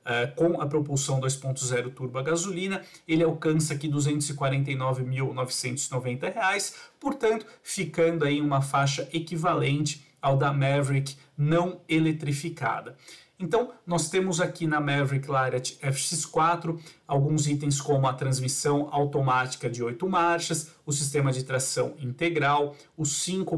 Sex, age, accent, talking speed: male, 40-59, Brazilian, 120 wpm